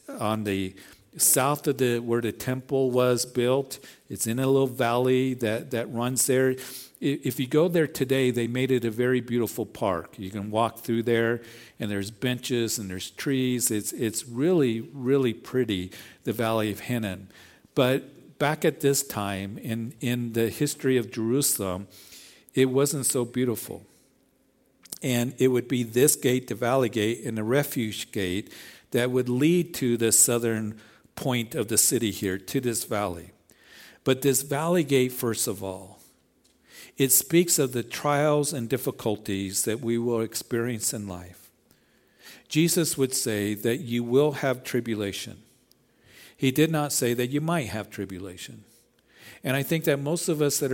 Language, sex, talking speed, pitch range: English, male, 165 wpm, 110-135 Hz